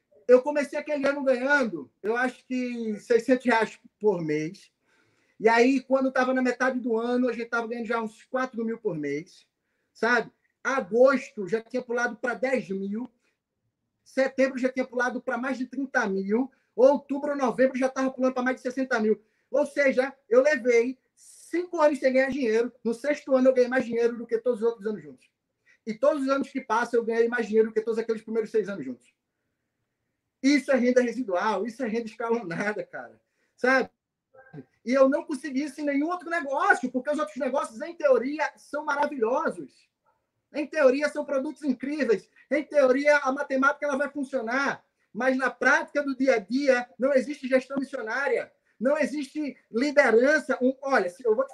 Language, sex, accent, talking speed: Portuguese, male, Brazilian, 180 wpm